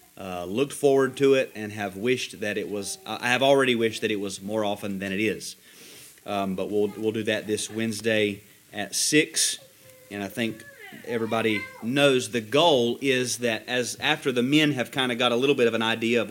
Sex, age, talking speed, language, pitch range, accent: male, 30-49, 215 wpm, English, 105-140 Hz, American